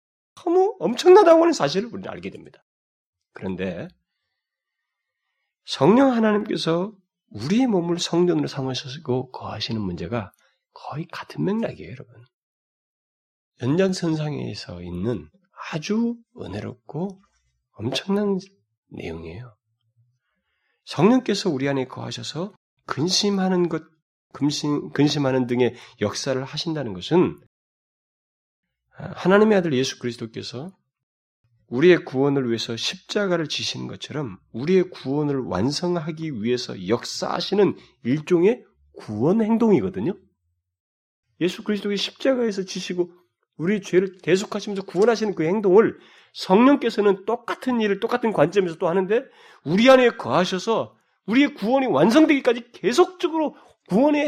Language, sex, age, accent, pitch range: Korean, male, 30-49, native, 125-205 Hz